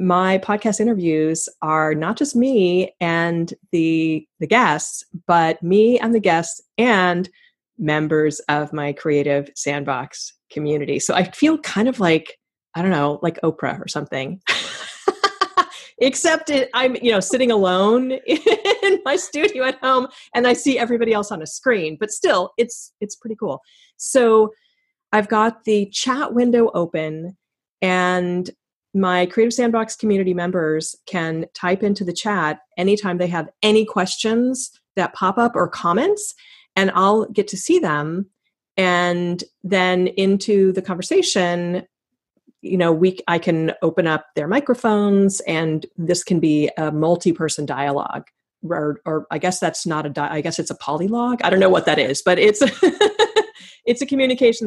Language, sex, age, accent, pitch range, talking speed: English, female, 30-49, American, 165-240 Hz, 155 wpm